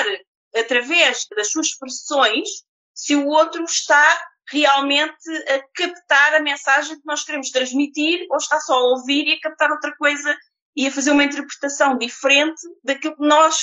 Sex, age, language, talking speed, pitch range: female, 20-39, Portuguese, 160 wpm, 245-315 Hz